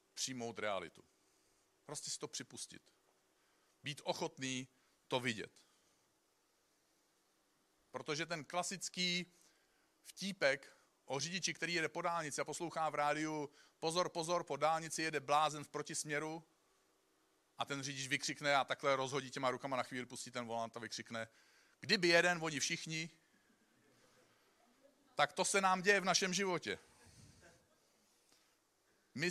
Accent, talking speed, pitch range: native, 125 wpm, 130-175 Hz